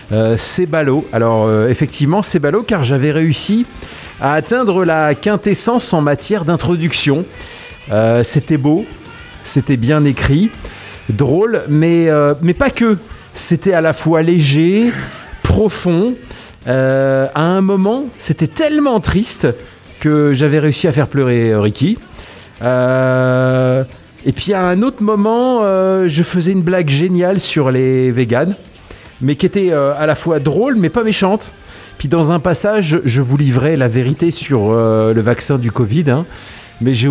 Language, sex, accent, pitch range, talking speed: French, male, French, 125-180 Hz, 150 wpm